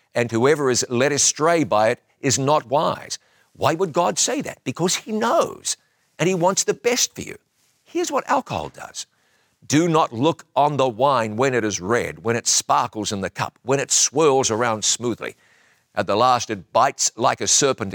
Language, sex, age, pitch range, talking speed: English, male, 50-69, 120-170 Hz, 195 wpm